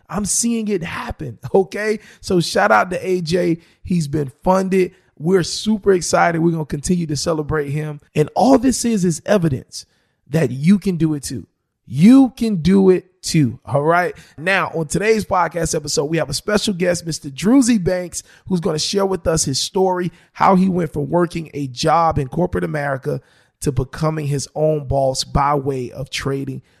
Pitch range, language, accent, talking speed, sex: 135-180 Hz, English, American, 180 wpm, male